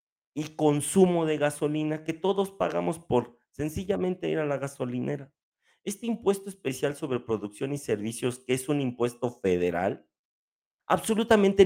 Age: 50-69